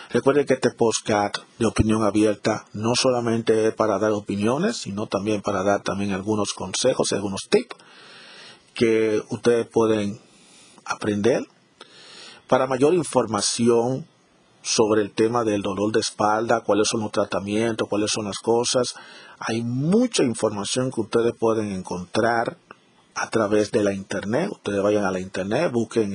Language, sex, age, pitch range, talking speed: Spanish, male, 40-59, 105-120 Hz, 140 wpm